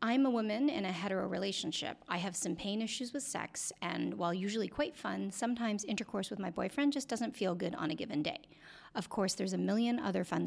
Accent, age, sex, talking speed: American, 40-59, female, 225 wpm